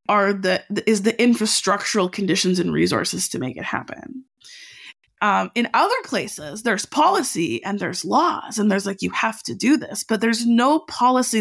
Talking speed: 175 wpm